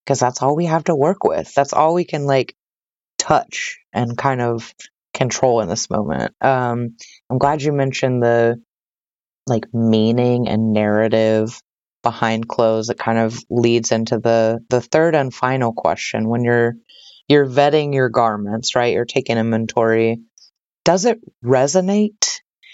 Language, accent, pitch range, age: English, American, 115-145 Hz, 30-49